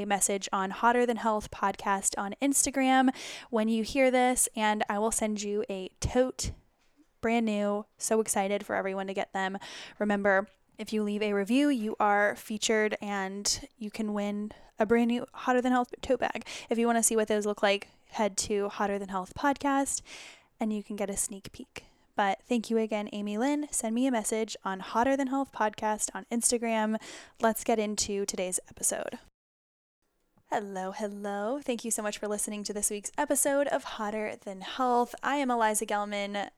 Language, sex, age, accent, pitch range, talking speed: English, female, 10-29, American, 200-235 Hz, 185 wpm